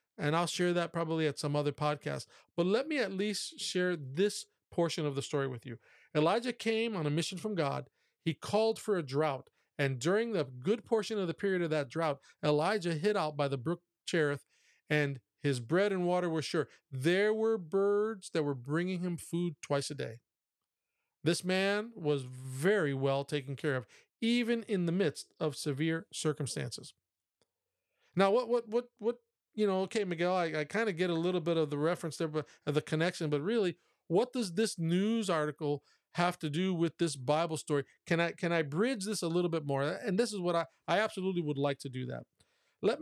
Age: 40-59